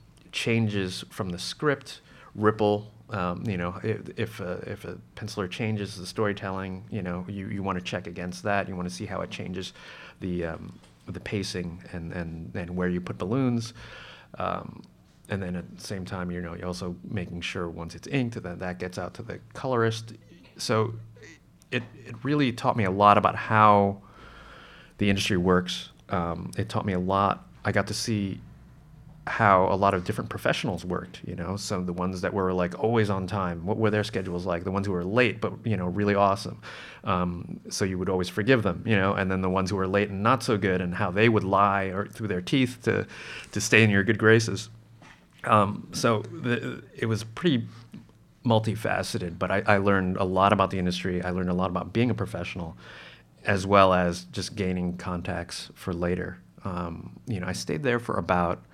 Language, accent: English, American